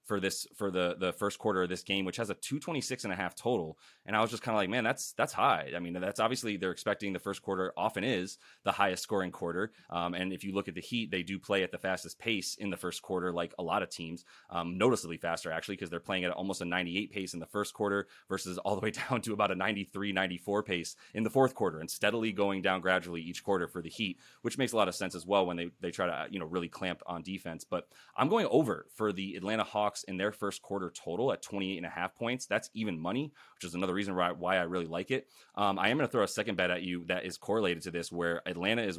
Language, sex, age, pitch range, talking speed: English, male, 30-49, 90-105 Hz, 275 wpm